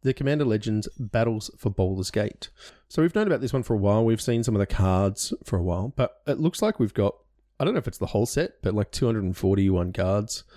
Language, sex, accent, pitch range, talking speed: English, male, Australian, 95-120 Hz, 245 wpm